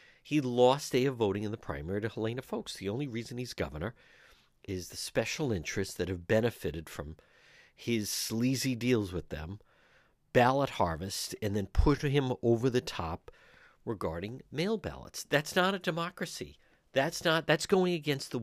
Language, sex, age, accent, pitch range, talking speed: English, male, 50-69, American, 95-135 Hz, 165 wpm